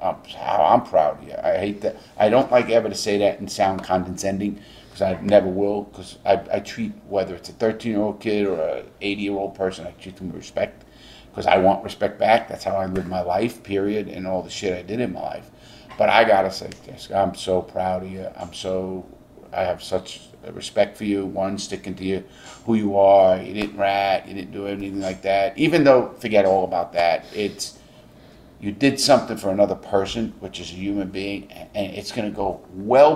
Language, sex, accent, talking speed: English, male, American, 225 wpm